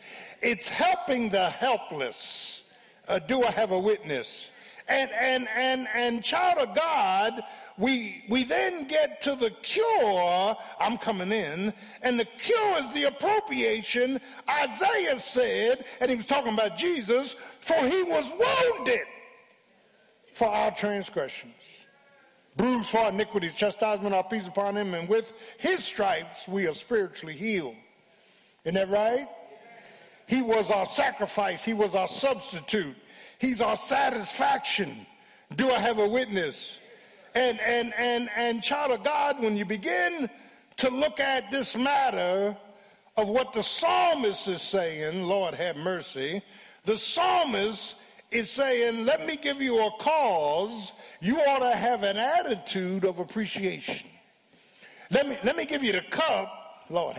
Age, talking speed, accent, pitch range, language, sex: 50-69, 140 wpm, American, 205-275 Hz, English, male